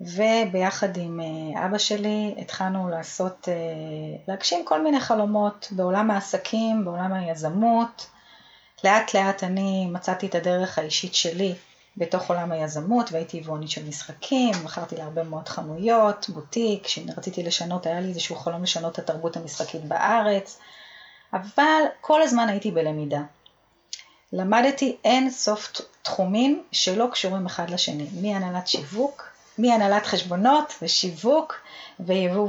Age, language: 30-49, Hebrew